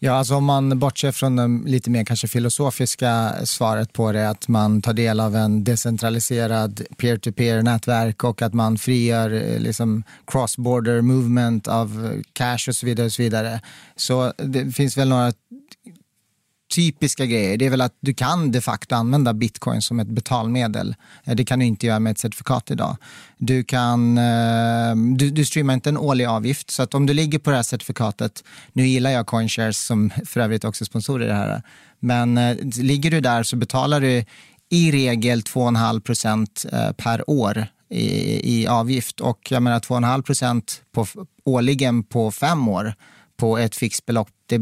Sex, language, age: male, Swedish, 30-49